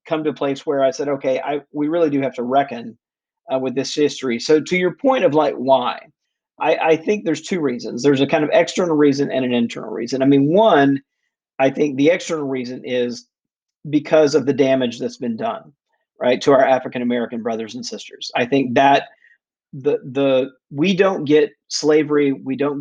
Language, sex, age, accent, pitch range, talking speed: English, male, 40-59, American, 130-150 Hz, 200 wpm